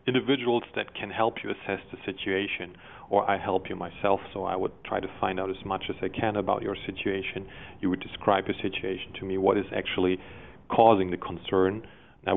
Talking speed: 205 wpm